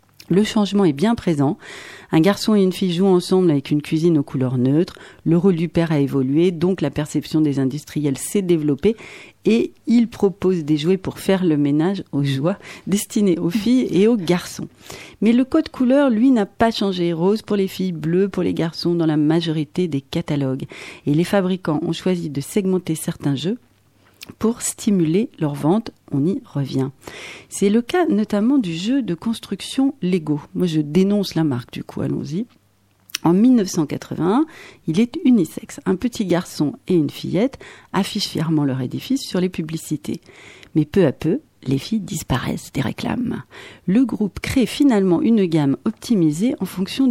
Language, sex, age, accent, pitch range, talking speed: French, female, 40-59, French, 150-210 Hz, 175 wpm